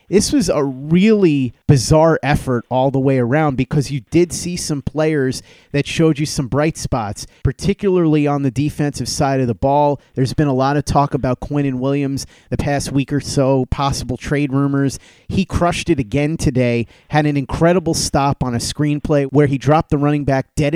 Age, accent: 30-49, American